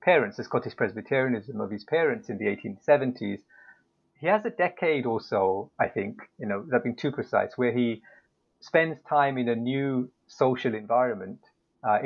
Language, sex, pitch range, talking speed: English, male, 115-145 Hz, 165 wpm